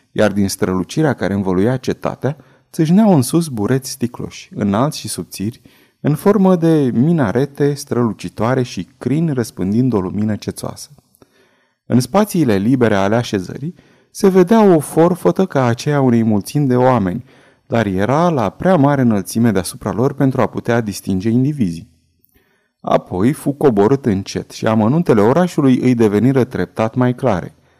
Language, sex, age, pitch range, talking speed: Romanian, male, 30-49, 110-145 Hz, 140 wpm